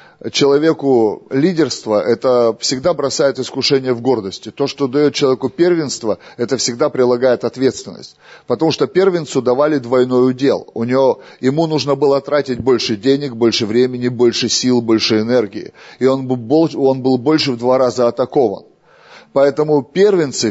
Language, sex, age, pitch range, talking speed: Russian, male, 30-49, 120-150 Hz, 135 wpm